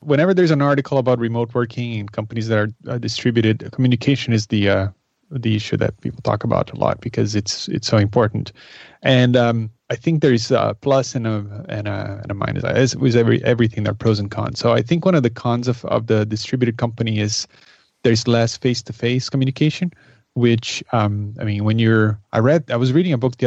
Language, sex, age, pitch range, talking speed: English, male, 30-49, 110-130 Hz, 215 wpm